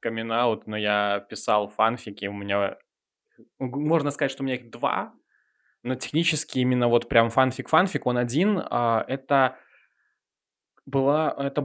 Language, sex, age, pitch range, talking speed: Russian, male, 20-39, 120-160 Hz, 130 wpm